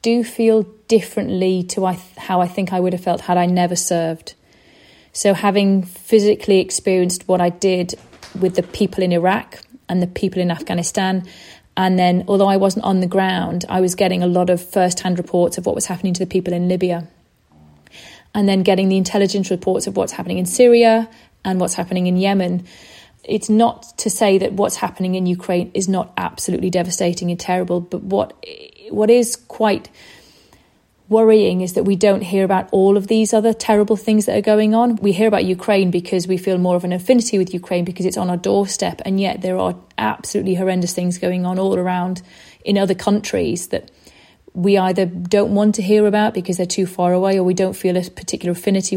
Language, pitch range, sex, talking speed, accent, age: English, 180-205 Hz, female, 200 wpm, British, 30-49